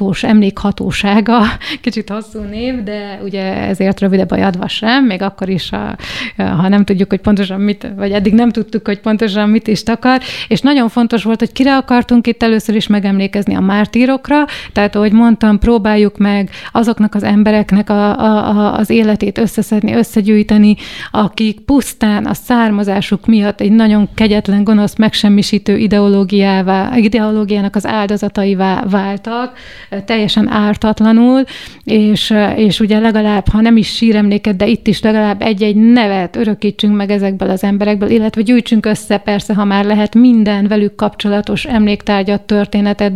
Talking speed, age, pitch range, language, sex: 145 wpm, 30-49, 205-230 Hz, Hungarian, female